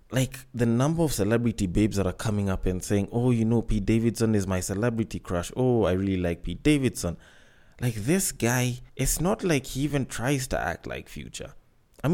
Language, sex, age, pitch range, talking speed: English, male, 20-39, 115-165 Hz, 205 wpm